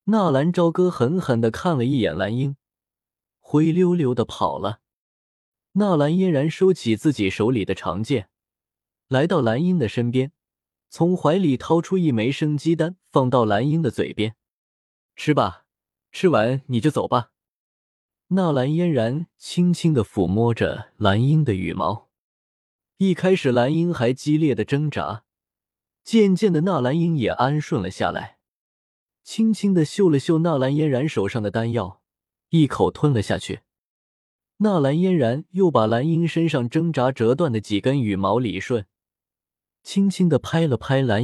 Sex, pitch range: male, 110-165 Hz